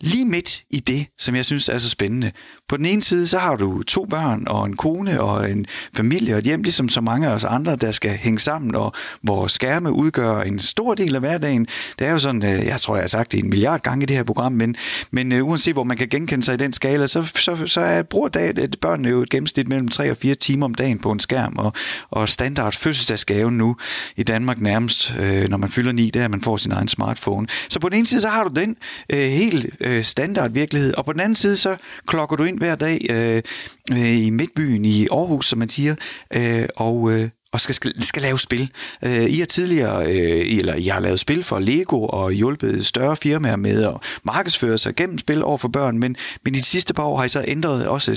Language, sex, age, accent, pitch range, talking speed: Danish, male, 30-49, native, 110-155 Hz, 245 wpm